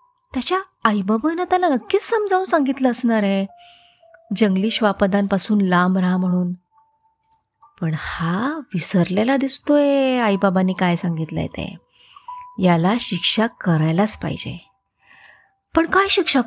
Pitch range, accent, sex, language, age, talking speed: 175-290 Hz, native, female, Marathi, 30-49, 105 wpm